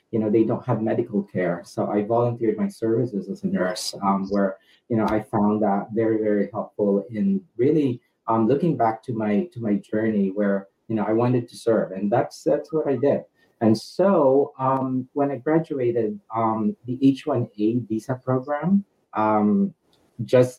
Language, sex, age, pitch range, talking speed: English, male, 30-49, 105-130 Hz, 175 wpm